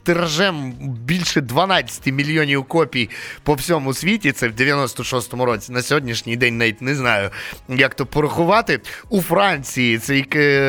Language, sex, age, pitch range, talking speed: Ukrainian, male, 20-39, 115-160 Hz, 135 wpm